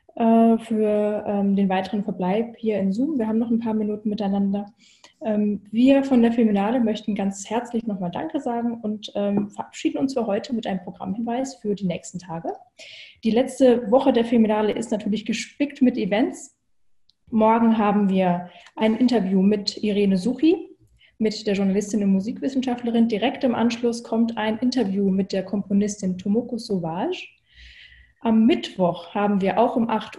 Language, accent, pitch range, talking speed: German, German, 200-240 Hz, 160 wpm